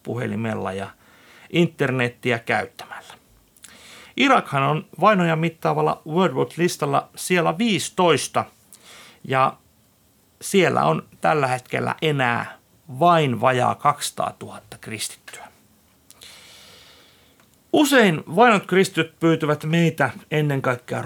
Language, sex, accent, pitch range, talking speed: Finnish, male, native, 120-155 Hz, 90 wpm